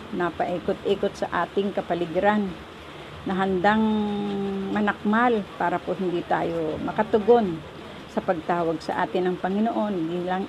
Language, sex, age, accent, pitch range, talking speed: English, female, 50-69, Filipino, 175-205 Hz, 120 wpm